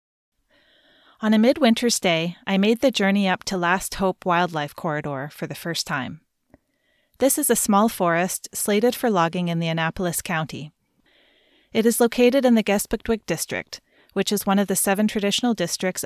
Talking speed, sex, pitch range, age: 170 wpm, female, 165-215 Hz, 30-49